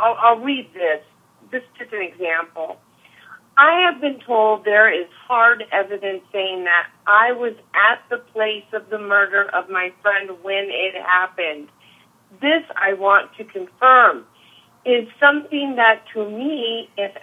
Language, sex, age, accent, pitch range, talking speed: English, female, 50-69, American, 200-245 Hz, 155 wpm